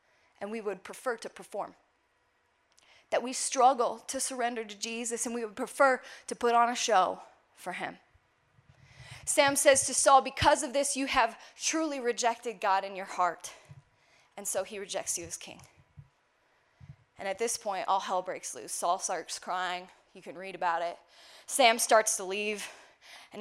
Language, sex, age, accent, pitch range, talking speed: English, female, 10-29, American, 205-300 Hz, 170 wpm